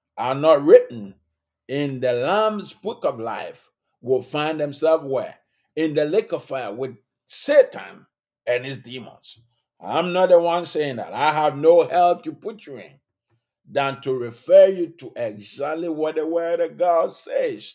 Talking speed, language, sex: 165 wpm, English, male